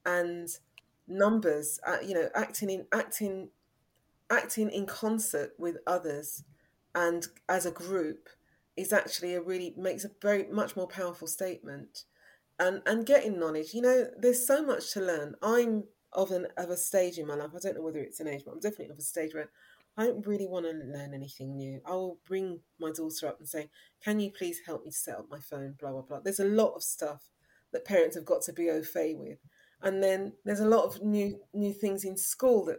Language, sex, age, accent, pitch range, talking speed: English, female, 30-49, British, 160-215 Hz, 210 wpm